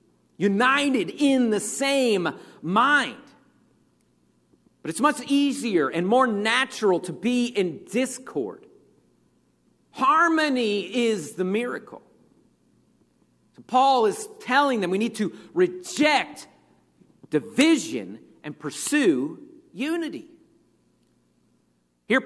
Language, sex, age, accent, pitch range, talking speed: English, male, 50-69, American, 195-285 Hz, 90 wpm